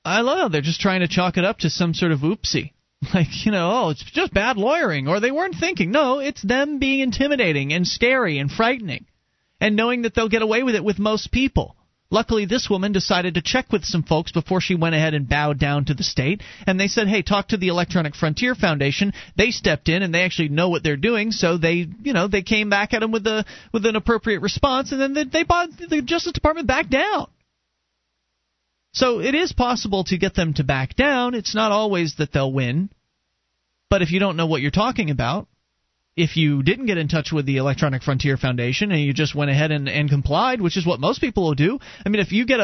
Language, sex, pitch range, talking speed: English, male, 155-230 Hz, 235 wpm